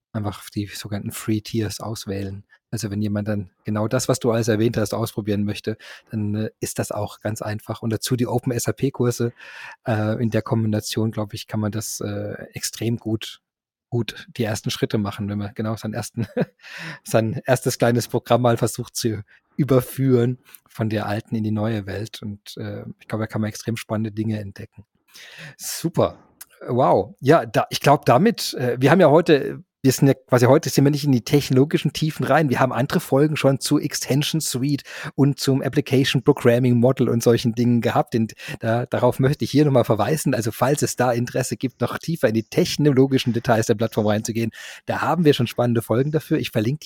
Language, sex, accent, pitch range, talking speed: German, male, German, 110-130 Hz, 190 wpm